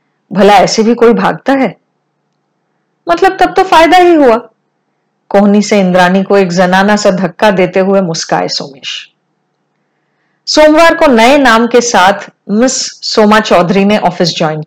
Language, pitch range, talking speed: Hindi, 185-265 Hz, 145 wpm